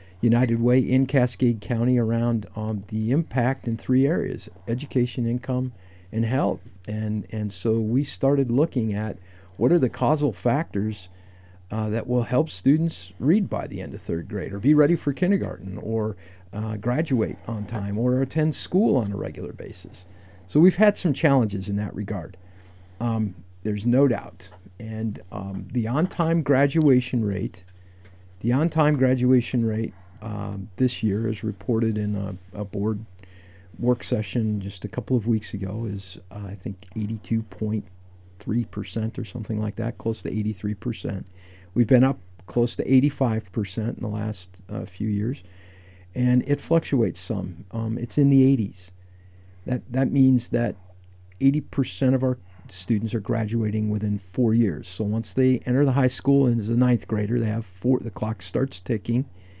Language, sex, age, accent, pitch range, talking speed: English, male, 50-69, American, 100-125 Hz, 160 wpm